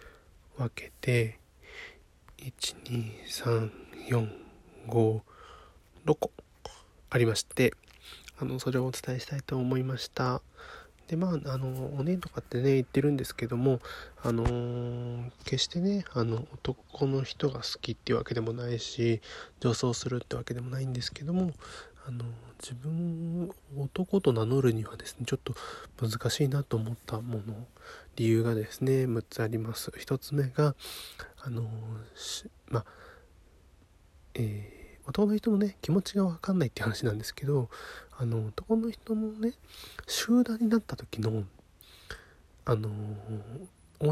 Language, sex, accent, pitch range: Japanese, male, native, 115-150 Hz